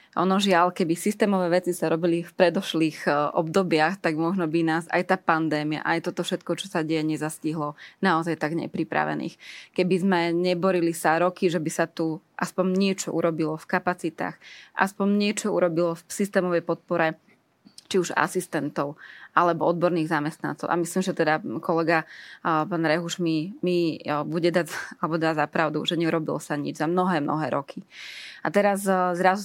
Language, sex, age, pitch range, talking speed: Slovak, female, 20-39, 165-180 Hz, 165 wpm